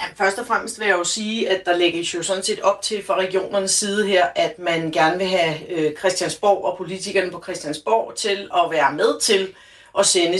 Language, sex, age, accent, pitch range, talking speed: Danish, female, 40-59, native, 175-220 Hz, 210 wpm